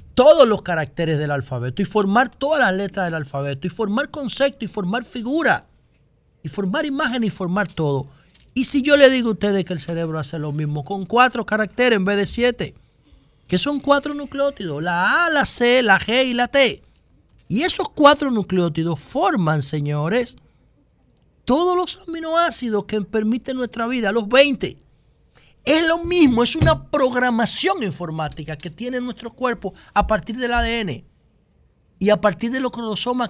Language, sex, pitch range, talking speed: Spanish, male, 190-265 Hz, 170 wpm